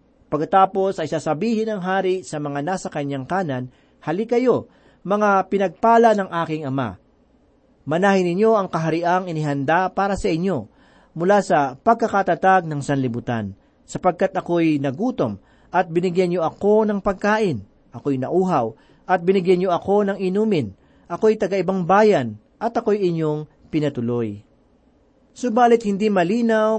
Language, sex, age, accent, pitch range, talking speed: Filipino, male, 40-59, native, 155-205 Hz, 130 wpm